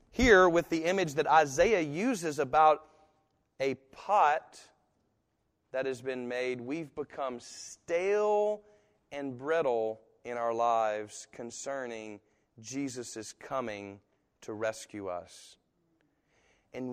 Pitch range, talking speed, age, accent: 115-160 Hz, 105 wpm, 30-49, American